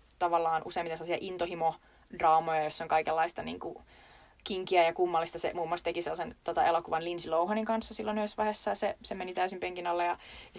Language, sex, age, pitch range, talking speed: Finnish, female, 20-39, 165-210 Hz, 170 wpm